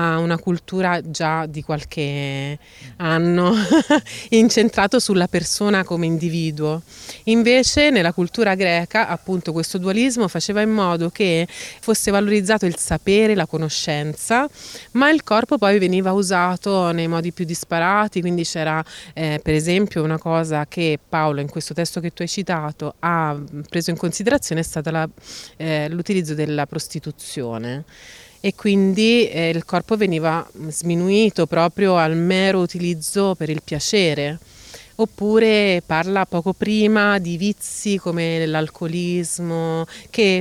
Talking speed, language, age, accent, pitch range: 130 wpm, Italian, 30-49, native, 165-210 Hz